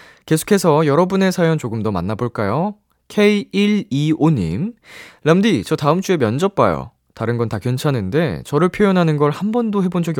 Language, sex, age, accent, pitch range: Korean, male, 20-39, native, 95-155 Hz